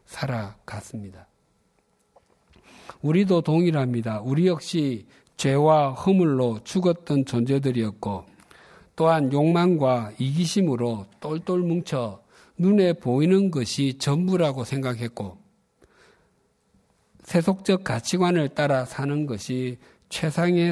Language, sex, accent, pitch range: Korean, male, native, 115-160 Hz